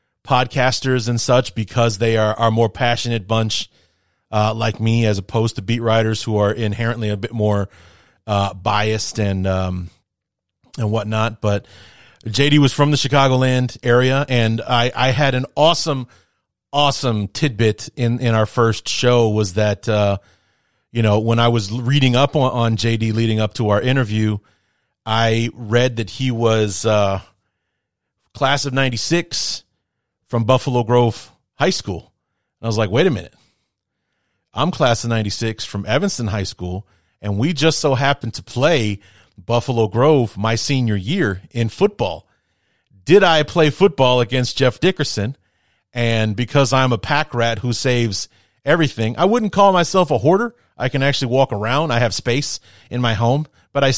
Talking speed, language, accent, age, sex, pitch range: 165 wpm, English, American, 30-49, male, 105-130 Hz